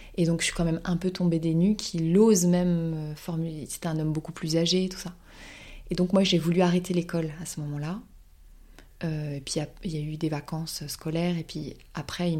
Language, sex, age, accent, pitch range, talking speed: French, female, 20-39, French, 155-175 Hz, 245 wpm